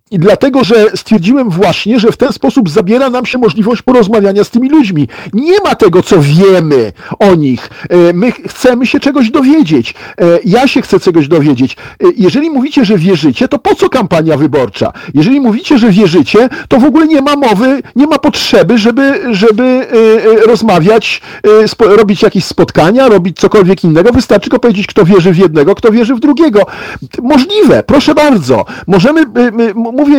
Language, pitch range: Polish, 190-260 Hz